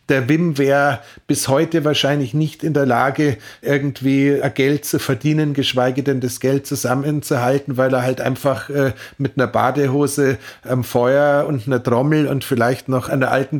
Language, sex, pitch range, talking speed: German, male, 130-145 Hz, 170 wpm